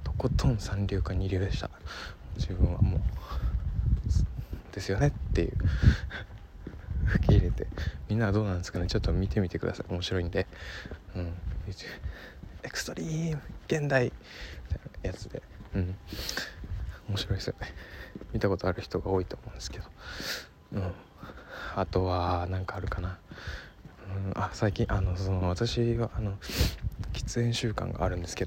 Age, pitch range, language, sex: 20-39, 90-110 Hz, Japanese, male